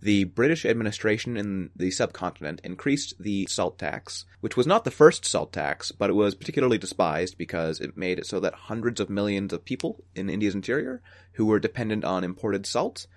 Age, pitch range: 30-49, 90-120 Hz